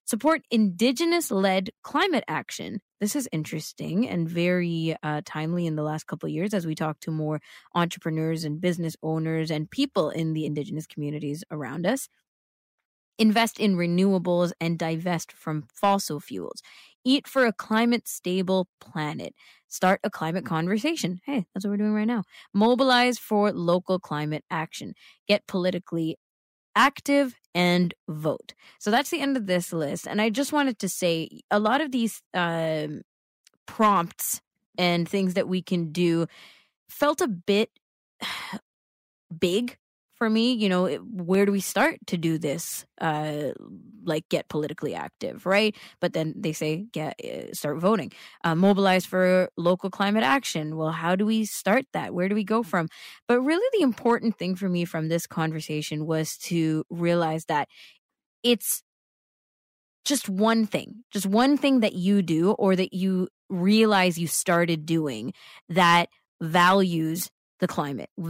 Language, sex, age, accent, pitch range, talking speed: English, female, 20-39, American, 165-215 Hz, 155 wpm